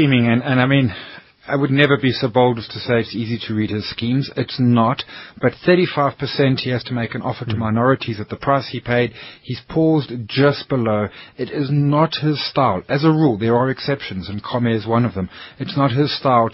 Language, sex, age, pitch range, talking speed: English, male, 30-49, 110-135 Hz, 220 wpm